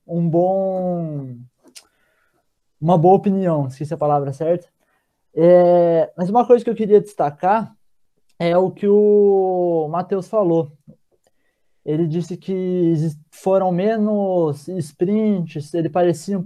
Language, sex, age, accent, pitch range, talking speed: Portuguese, male, 20-39, Brazilian, 170-210 Hz, 115 wpm